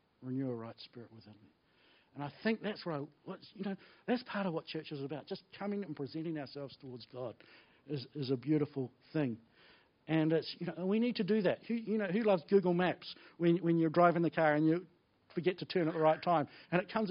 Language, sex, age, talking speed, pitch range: English, male, 60-79, 235 wpm, 145-190 Hz